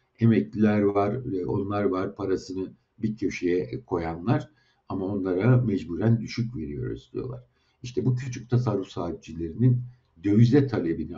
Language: Turkish